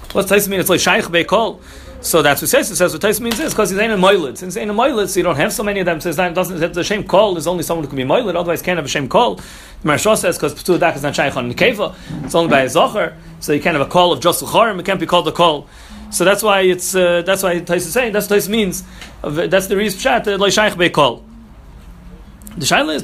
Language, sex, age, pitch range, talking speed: English, male, 30-49, 165-210 Hz, 290 wpm